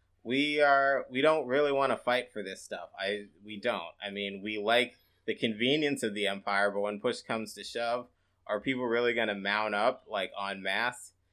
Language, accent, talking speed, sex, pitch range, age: English, American, 205 wpm, male, 95-120 Hz, 20-39